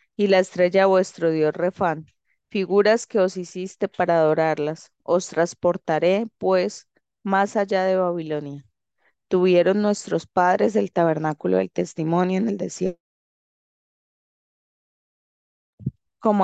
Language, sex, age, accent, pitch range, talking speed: Spanish, female, 20-39, Colombian, 160-190 Hz, 110 wpm